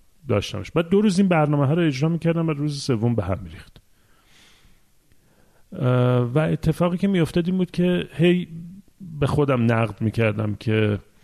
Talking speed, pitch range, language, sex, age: 155 wpm, 115-160 Hz, Persian, male, 40-59